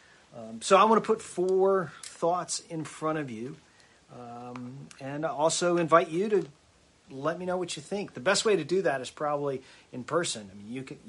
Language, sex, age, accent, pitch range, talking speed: English, male, 40-59, American, 120-155 Hz, 210 wpm